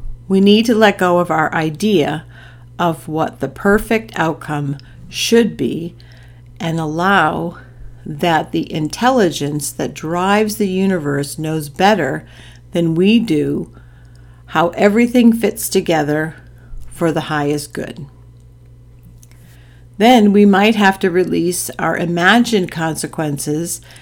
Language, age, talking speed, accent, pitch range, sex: English, 50-69, 115 wpm, American, 120-195 Hz, female